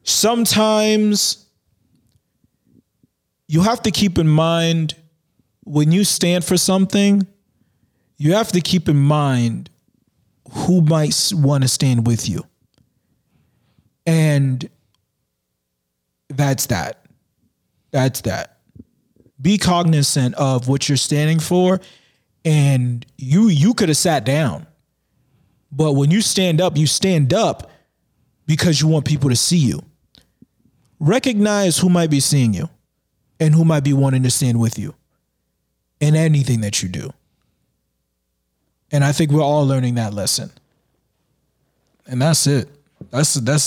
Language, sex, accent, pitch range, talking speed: English, male, American, 120-165 Hz, 125 wpm